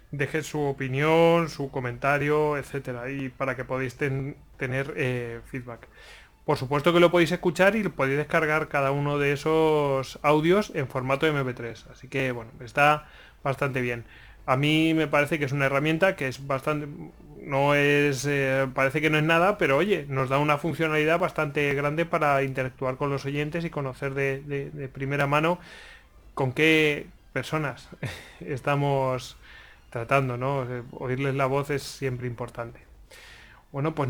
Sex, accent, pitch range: male, Spanish, 130-155 Hz